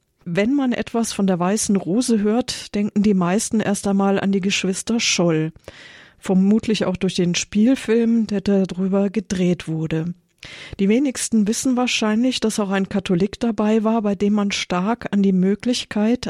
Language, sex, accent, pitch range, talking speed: German, female, German, 185-220 Hz, 160 wpm